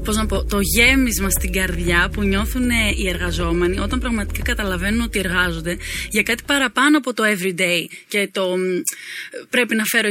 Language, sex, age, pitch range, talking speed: Greek, female, 20-39, 185-235 Hz, 160 wpm